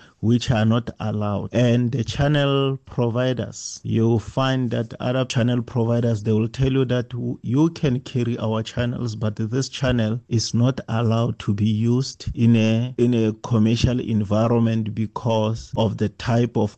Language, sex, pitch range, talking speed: English, male, 105-120 Hz, 155 wpm